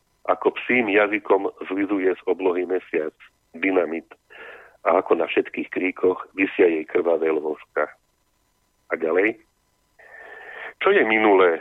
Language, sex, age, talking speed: Slovak, male, 40-59, 115 wpm